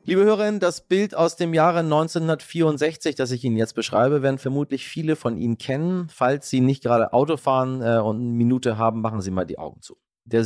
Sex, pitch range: male, 95-120 Hz